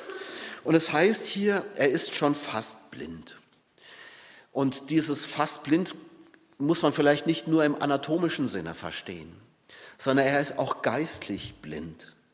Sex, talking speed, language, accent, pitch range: male, 135 wpm, German, German, 115-155 Hz